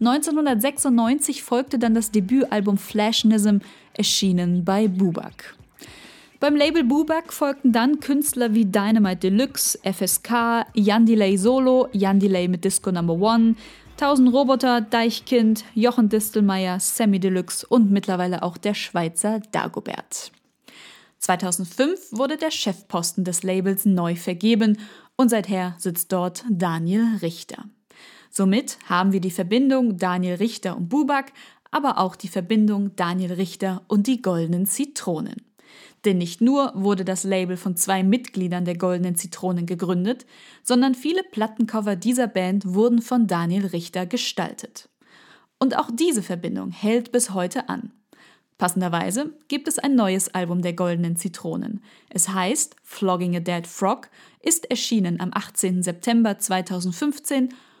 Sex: female